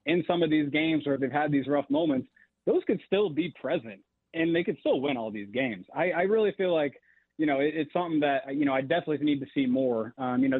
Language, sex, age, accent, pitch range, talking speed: English, male, 30-49, American, 135-160 Hz, 255 wpm